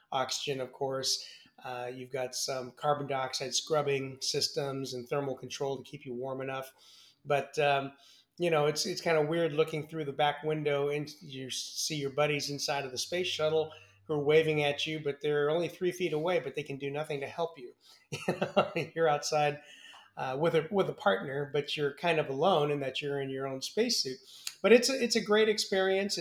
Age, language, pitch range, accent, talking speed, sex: 30-49, English, 135-155 Hz, American, 210 wpm, male